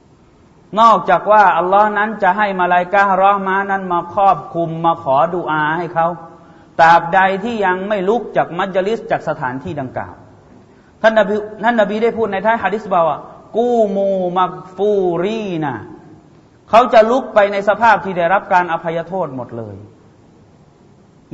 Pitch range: 155-200 Hz